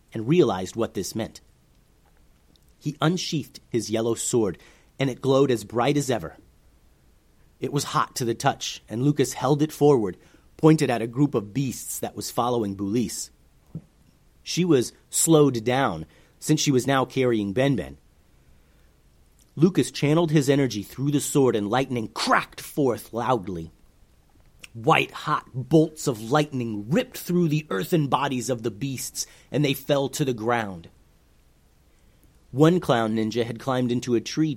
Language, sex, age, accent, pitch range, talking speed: English, male, 30-49, American, 100-140 Hz, 150 wpm